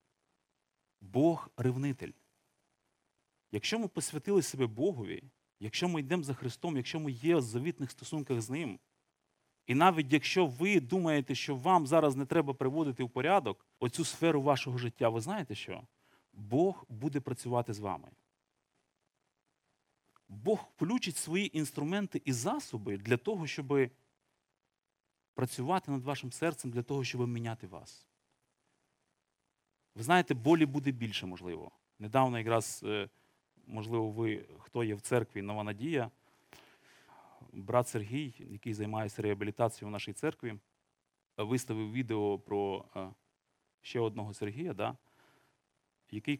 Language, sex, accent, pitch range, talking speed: Ukrainian, male, native, 110-145 Hz, 125 wpm